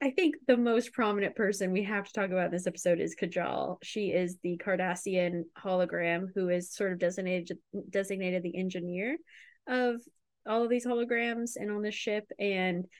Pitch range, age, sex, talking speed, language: 175-220 Hz, 20-39, female, 180 wpm, English